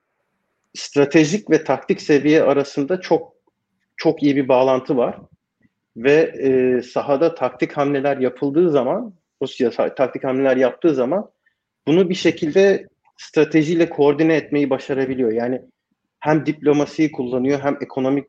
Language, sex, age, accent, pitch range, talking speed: Turkish, male, 40-59, native, 125-160 Hz, 120 wpm